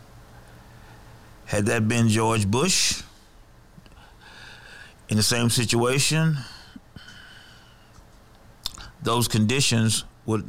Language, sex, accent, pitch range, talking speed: English, male, American, 100-115 Hz, 70 wpm